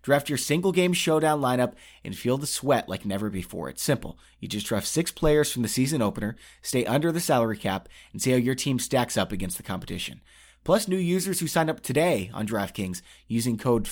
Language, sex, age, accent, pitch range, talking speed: English, male, 30-49, American, 105-160 Hz, 210 wpm